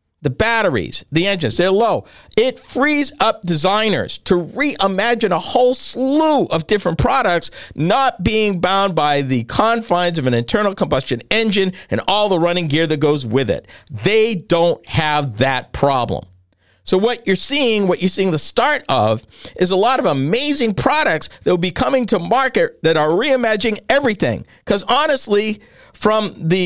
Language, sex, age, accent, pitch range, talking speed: English, male, 50-69, American, 150-220 Hz, 165 wpm